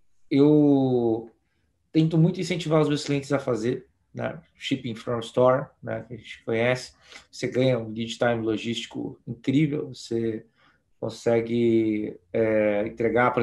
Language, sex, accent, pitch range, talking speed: Portuguese, male, Brazilian, 120-155 Hz, 140 wpm